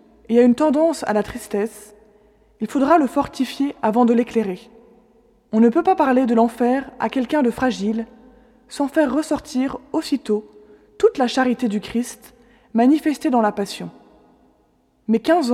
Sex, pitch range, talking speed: female, 220-275 Hz, 155 wpm